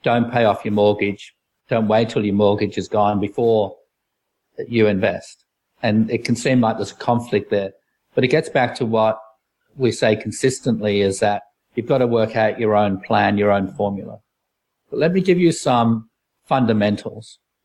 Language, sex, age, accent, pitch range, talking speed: English, male, 50-69, Australian, 105-130 Hz, 180 wpm